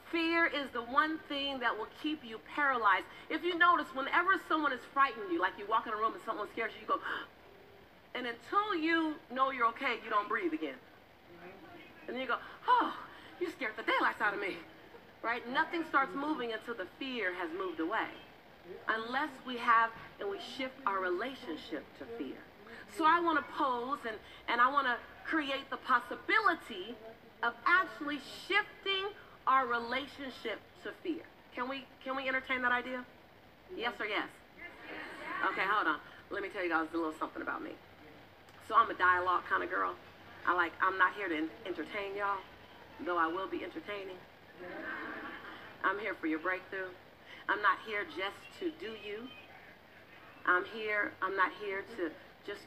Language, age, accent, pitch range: English, 40-59, American, 190-305 Hz